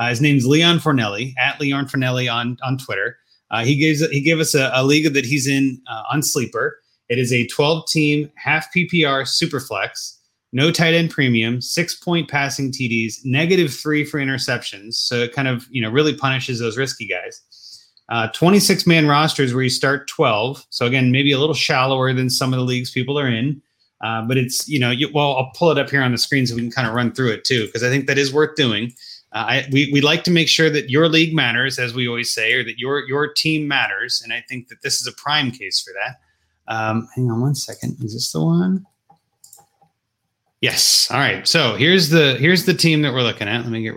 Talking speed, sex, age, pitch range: 225 wpm, male, 30-49, 125-150 Hz